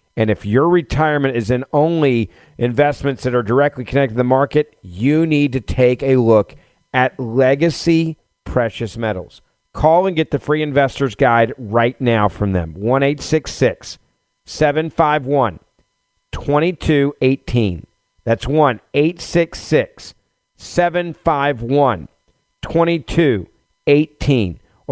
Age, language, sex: 50-69, English, male